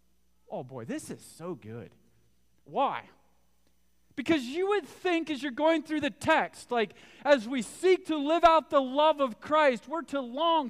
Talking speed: 175 wpm